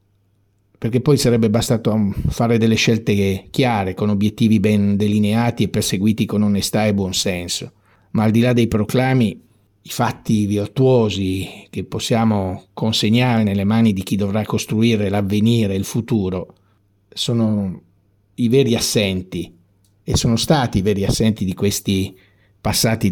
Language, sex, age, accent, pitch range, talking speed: Italian, male, 50-69, native, 100-115 Hz, 140 wpm